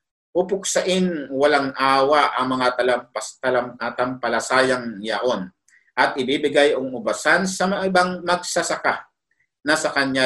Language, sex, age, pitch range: Filipino, male, 50-69, 125-170 Hz